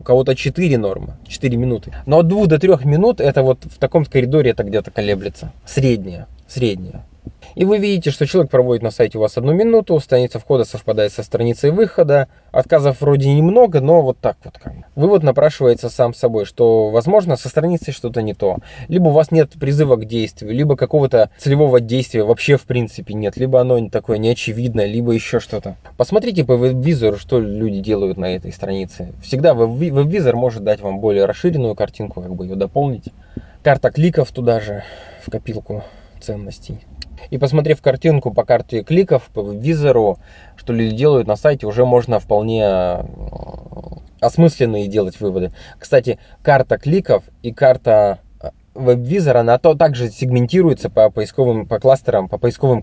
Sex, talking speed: male, 160 wpm